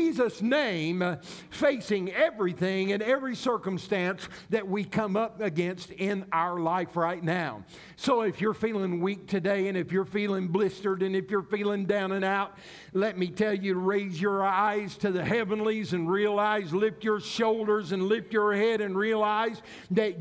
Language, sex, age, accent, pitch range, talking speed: English, male, 50-69, American, 180-220 Hz, 170 wpm